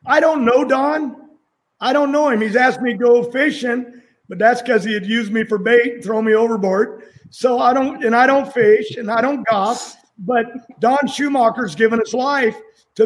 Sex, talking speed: male, 205 wpm